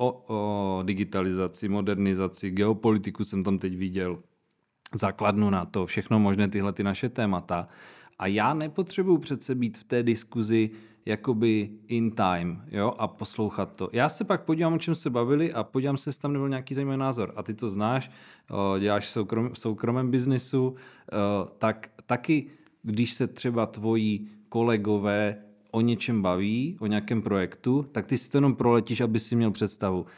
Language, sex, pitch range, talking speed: Czech, male, 105-125 Hz, 160 wpm